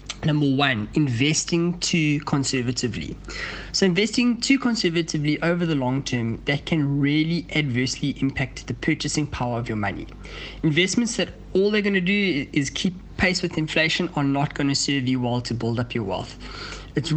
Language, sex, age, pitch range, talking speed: English, male, 20-39, 130-170 Hz, 165 wpm